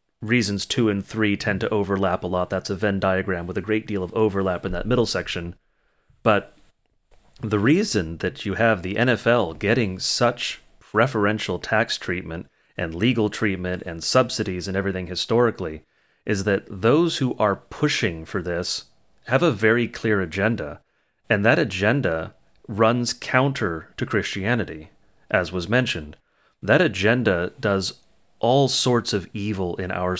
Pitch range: 95-115 Hz